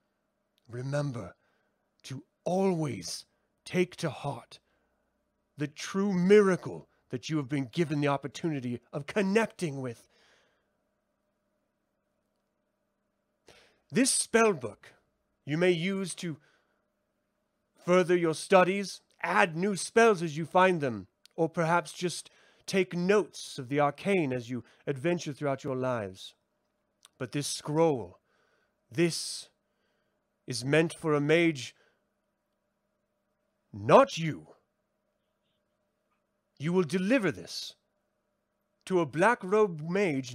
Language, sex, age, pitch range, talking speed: English, male, 30-49, 145-200 Hz, 100 wpm